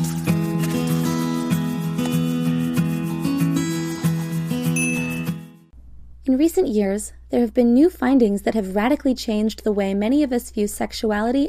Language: English